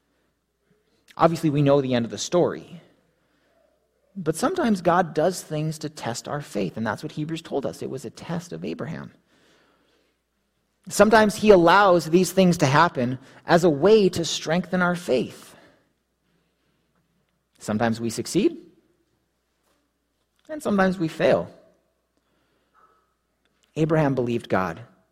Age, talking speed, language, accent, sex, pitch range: 30-49, 125 wpm, English, American, male, 115-165 Hz